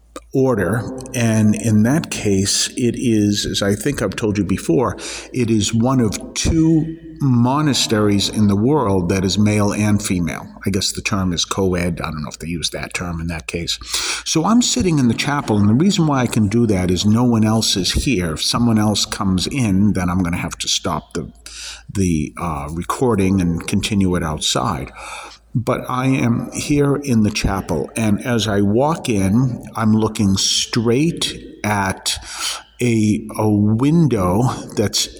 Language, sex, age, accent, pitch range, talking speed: English, male, 50-69, American, 95-120 Hz, 180 wpm